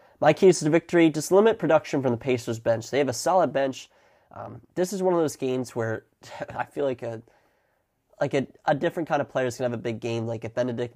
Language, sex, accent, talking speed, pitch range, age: English, male, American, 250 wpm, 115-135 Hz, 20-39